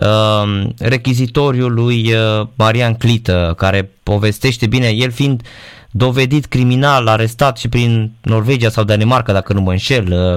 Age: 20-39